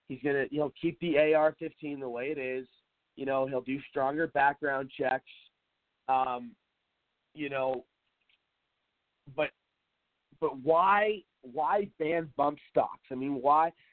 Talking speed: 140 wpm